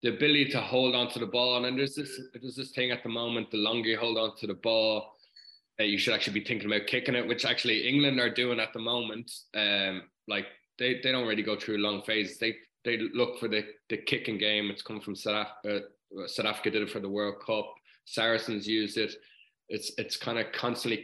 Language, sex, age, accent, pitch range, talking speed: English, male, 20-39, Irish, 105-125 Hz, 230 wpm